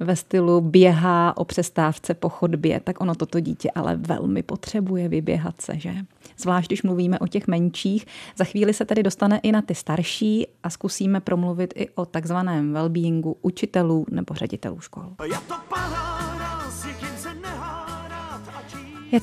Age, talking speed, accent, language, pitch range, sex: 30-49, 135 wpm, native, Czech, 175-210 Hz, female